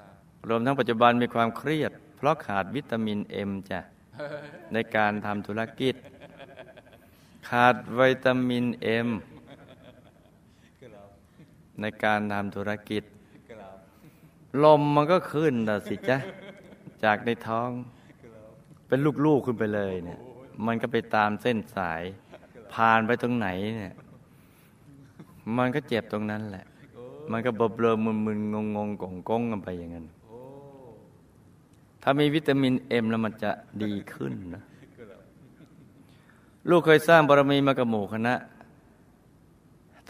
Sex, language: male, Thai